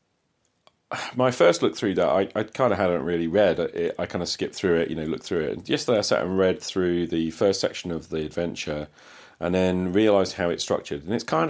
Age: 40-59